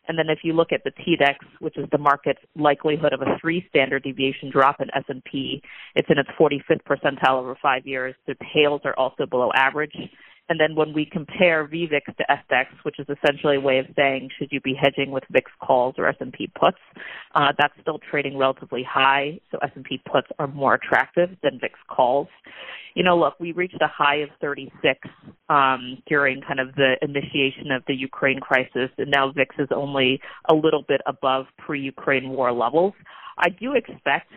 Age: 30-49